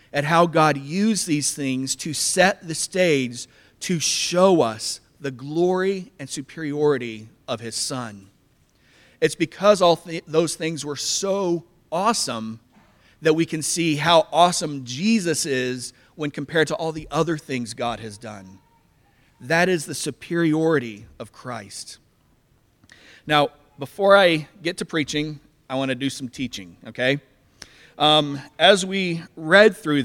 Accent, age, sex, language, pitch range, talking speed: American, 40-59, male, English, 130-165 Hz, 140 wpm